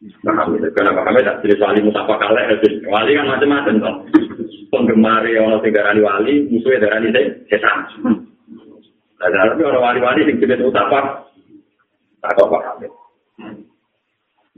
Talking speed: 95 wpm